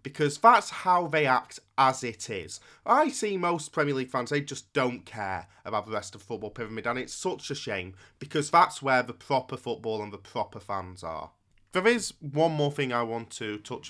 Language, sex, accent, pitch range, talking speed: English, male, British, 105-155 Hz, 215 wpm